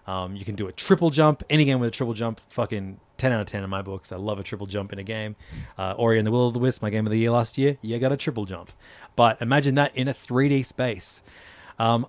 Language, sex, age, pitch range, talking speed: English, male, 20-39, 100-120 Hz, 285 wpm